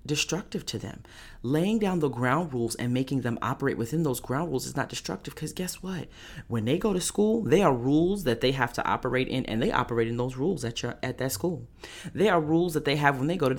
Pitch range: 110-140 Hz